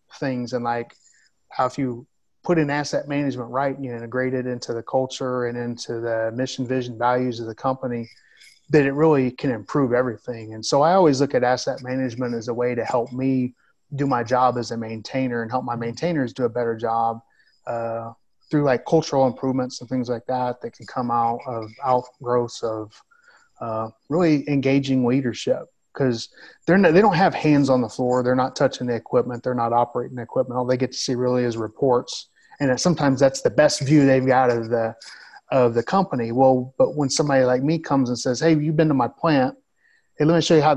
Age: 30-49